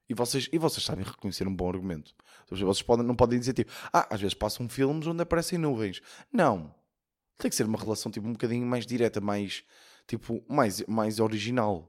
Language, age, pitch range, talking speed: Portuguese, 20-39, 95-130 Hz, 195 wpm